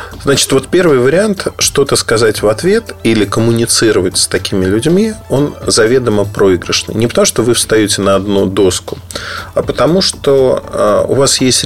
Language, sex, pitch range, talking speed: Russian, male, 95-120 Hz, 160 wpm